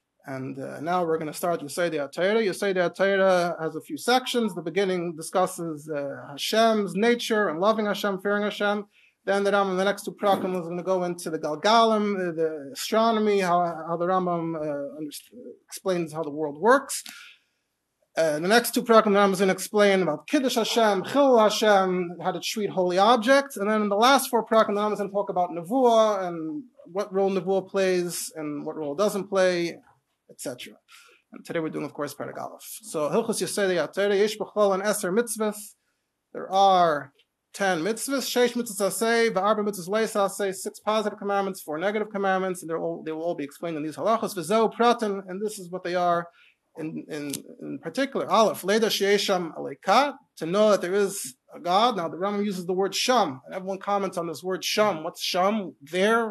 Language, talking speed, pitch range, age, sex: English, 180 wpm, 180-220 Hz, 30-49, male